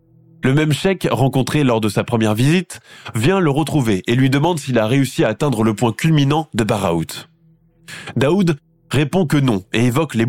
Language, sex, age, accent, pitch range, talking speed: French, male, 20-39, French, 115-160 Hz, 185 wpm